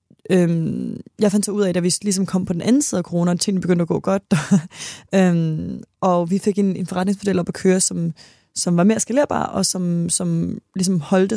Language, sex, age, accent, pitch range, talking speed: Danish, female, 20-39, native, 175-205 Hz, 220 wpm